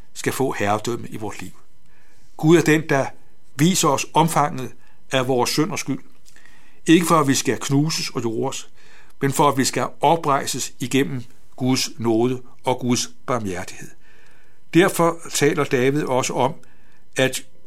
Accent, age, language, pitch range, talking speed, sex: native, 60-79, Danish, 125-150 Hz, 145 wpm, male